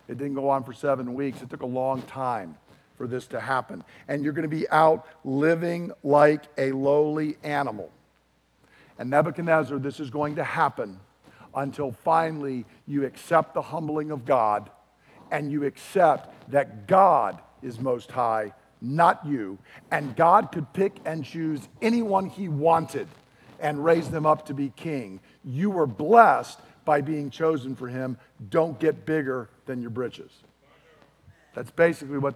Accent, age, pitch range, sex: American, 50-69, 135-165 Hz, male